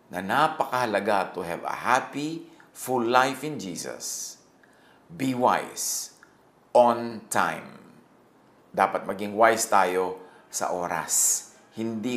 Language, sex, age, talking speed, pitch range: English, male, 50-69, 105 wpm, 90-125 Hz